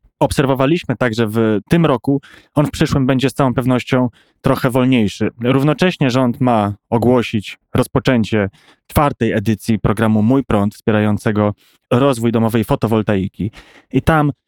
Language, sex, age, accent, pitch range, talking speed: Polish, male, 20-39, native, 115-135 Hz, 125 wpm